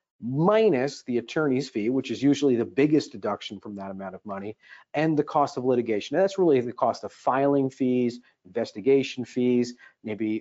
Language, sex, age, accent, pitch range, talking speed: English, male, 40-59, American, 115-150 Hz, 175 wpm